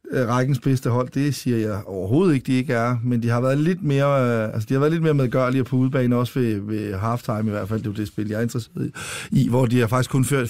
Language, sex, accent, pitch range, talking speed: Danish, male, native, 115-135 Hz, 250 wpm